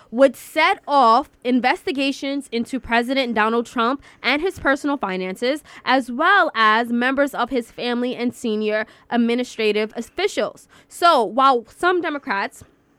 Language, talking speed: English, 125 wpm